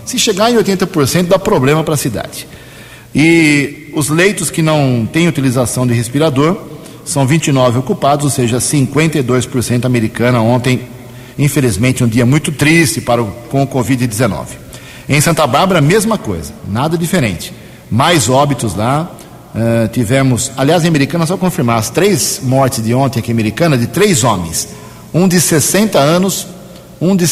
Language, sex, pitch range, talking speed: Portuguese, male, 125-160 Hz, 150 wpm